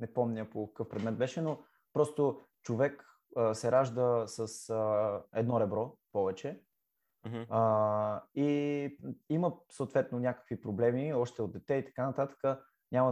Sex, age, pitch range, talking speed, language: male, 20-39, 115-145 Hz, 140 wpm, Bulgarian